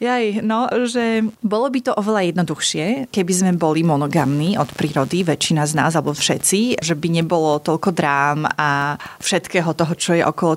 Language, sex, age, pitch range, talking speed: Slovak, female, 30-49, 170-205 Hz, 170 wpm